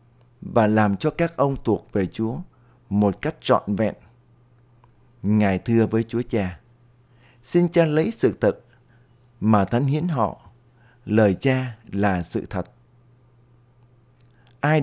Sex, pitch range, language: male, 110-125 Hz, Vietnamese